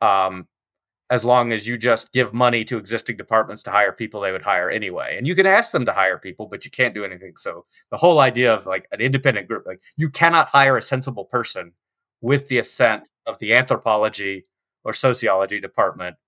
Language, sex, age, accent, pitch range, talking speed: English, male, 30-49, American, 100-125 Hz, 205 wpm